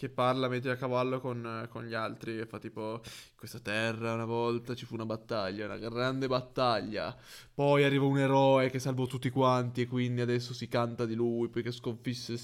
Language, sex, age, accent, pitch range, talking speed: Italian, male, 20-39, native, 120-160 Hz, 200 wpm